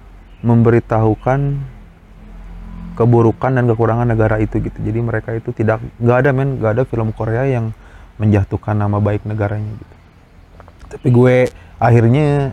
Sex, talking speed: male, 130 wpm